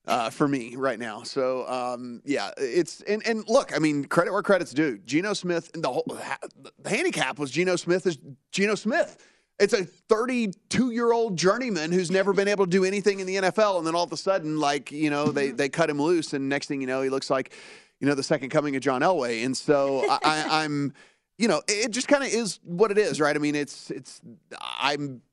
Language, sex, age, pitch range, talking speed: English, male, 30-49, 140-190 Hz, 225 wpm